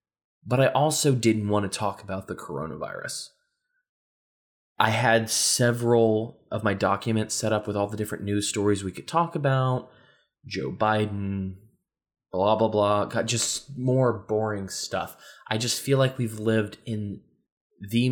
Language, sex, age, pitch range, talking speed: English, male, 20-39, 105-140 Hz, 150 wpm